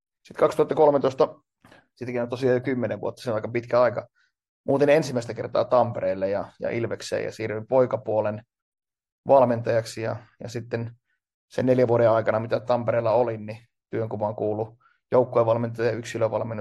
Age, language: 20-39, Finnish